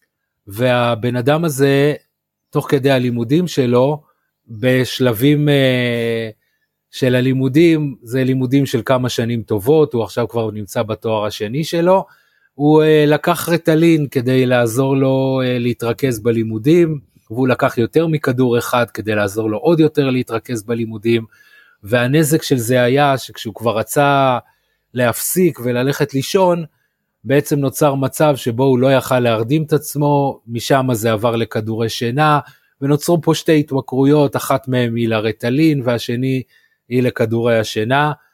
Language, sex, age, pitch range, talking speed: Hebrew, male, 30-49, 120-150 Hz, 130 wpm